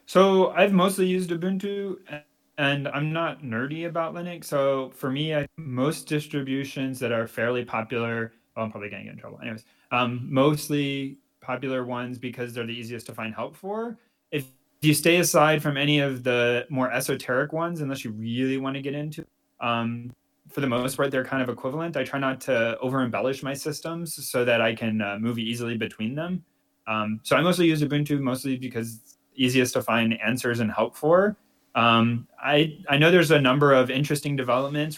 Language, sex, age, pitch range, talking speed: English, male, 30-49, 115-150 Hz, 190 wpm